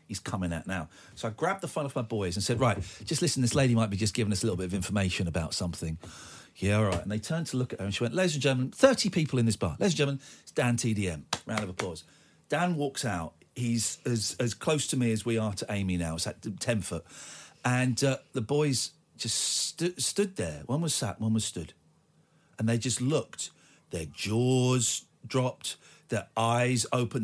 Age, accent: 40-59, British